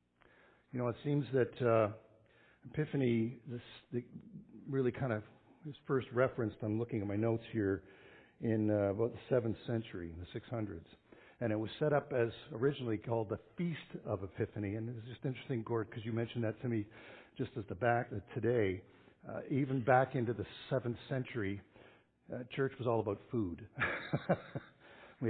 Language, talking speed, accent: English, 170 wpm, American